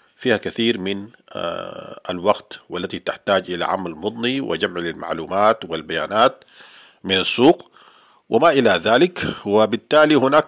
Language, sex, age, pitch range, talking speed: Arabic, male, 50-69, 100-130 Hz, 110 wpm